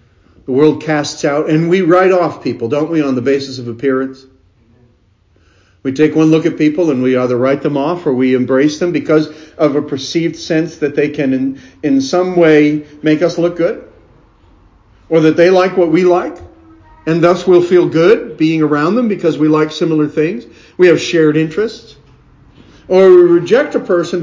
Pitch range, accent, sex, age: 140-210 Hz, American, male, 50-69